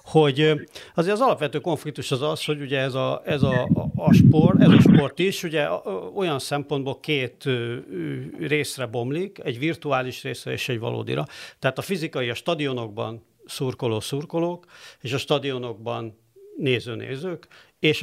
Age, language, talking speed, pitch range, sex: 50-69, Hungarian, 140 wpm, 125-160 Hz, male